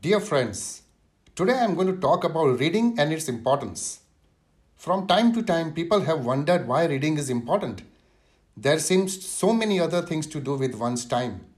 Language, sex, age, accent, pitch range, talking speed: English, male, 60-79, Indian, 125-170 Hz, 180 wpm